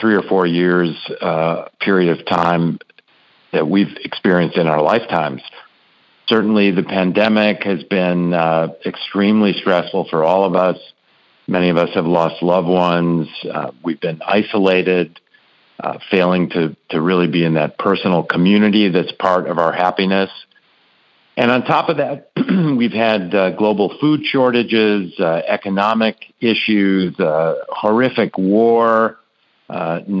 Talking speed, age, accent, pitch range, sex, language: 140 wpm, 50-69, American, 85-105 Hz, male, English